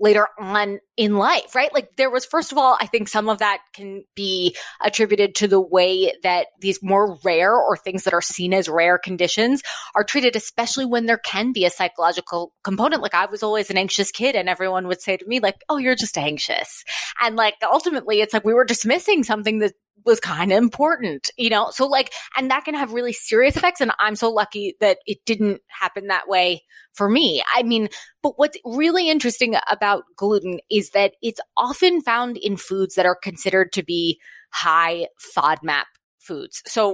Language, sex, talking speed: English, female, 200 wpm